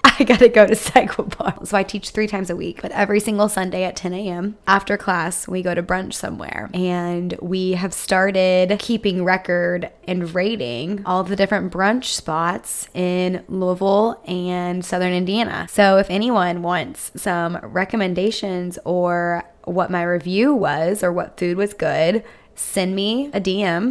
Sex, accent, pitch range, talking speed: female, American, 180-210 Hz, 165 wpm